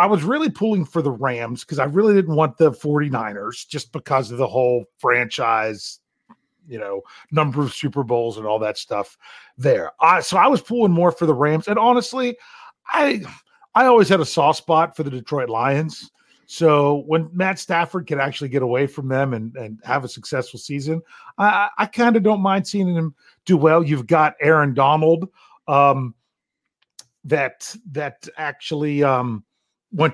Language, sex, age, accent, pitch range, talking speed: English, male, 40-59, American, 145-215 Hz, 175 wpm